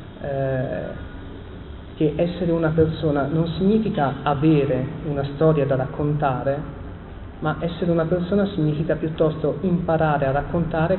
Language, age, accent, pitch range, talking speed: Italian, 30-49, native, 130-165 Hz, 115 wpm